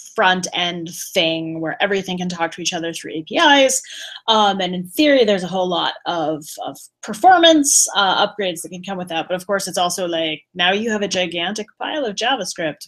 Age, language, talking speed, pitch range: 20-39, English, 200 wpm, 165-220 Hz